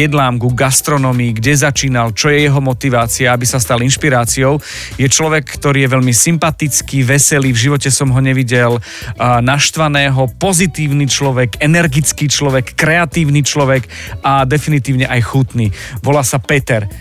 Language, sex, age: Slovak, male, 40-59